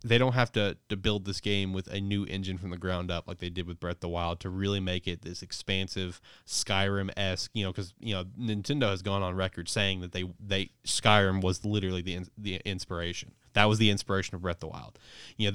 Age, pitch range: 20-39, 95-110 Hz